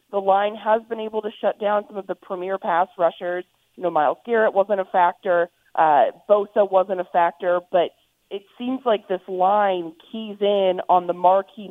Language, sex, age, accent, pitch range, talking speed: English, female, 30-49, American, 175-210 Hz, 190 wpm